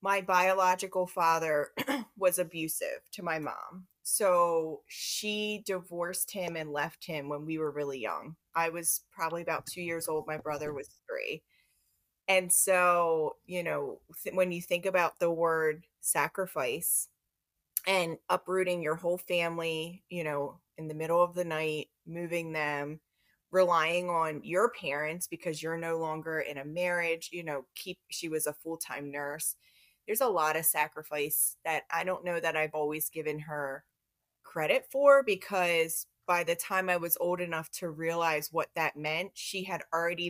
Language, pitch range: English, 155-180 Hz